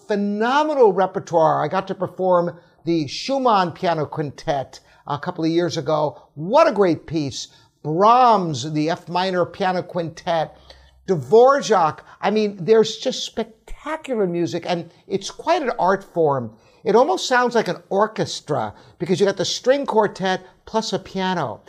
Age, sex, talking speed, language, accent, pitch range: 50-69, male, 145 wpm, English, American, 160-205 Hz